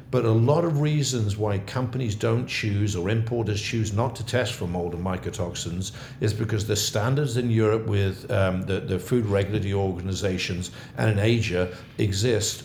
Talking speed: 170 wpm